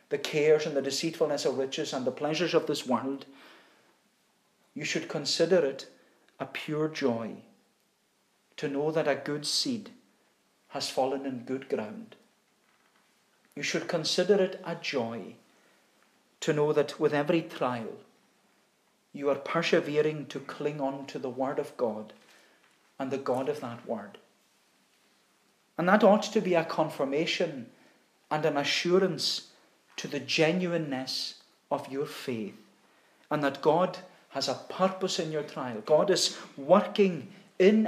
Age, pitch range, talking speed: 40-59, 140-180 Hz, 140 wpm